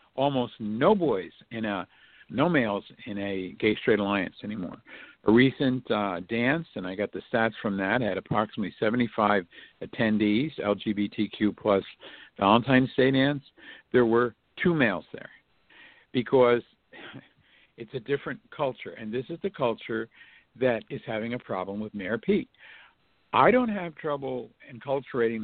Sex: male